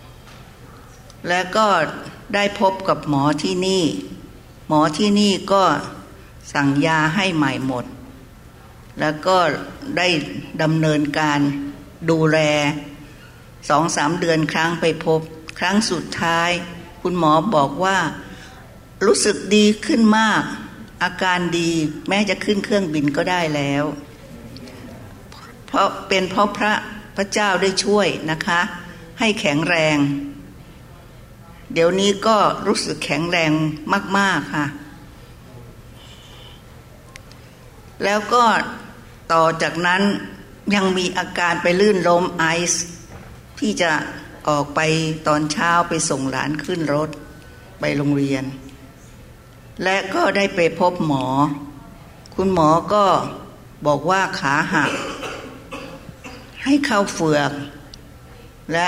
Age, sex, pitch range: 60-79, female, 145-185 Hz